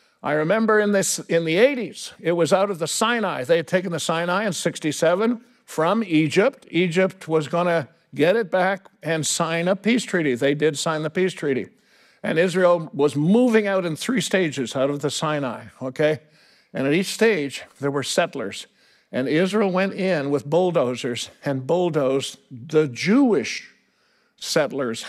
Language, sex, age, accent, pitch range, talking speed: English, male, 60-79, American, 140-185 Hz, 165 wpm